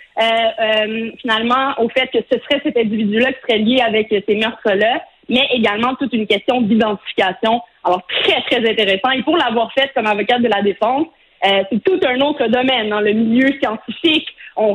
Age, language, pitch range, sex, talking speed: 30-49, French, 220-270 Hz, female, 185 wpm